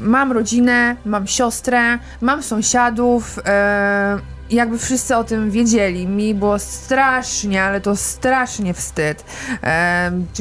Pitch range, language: 200-250 Hz, Polish